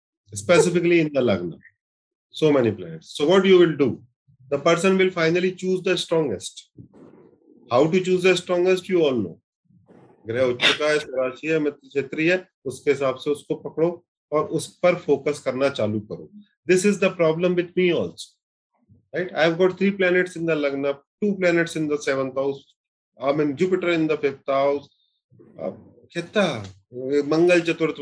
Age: 30-49